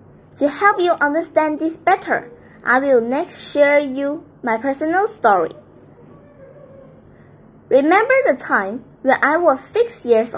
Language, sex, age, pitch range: Chinese, male, 10-29, 255-340 Hz